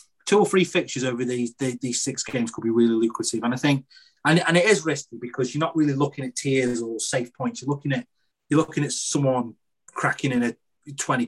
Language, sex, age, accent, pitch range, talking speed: English, male, 30-49, British, 120-145 Hz, 225 wpm